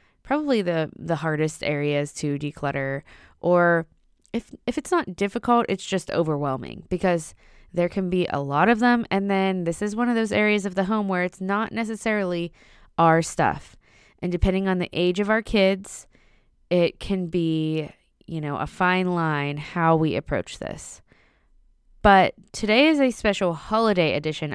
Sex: female